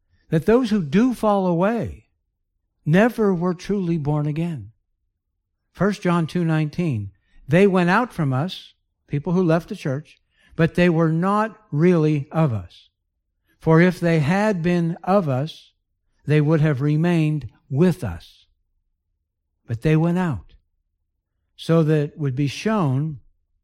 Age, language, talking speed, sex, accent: 60-79, English, 140 wpm, male, American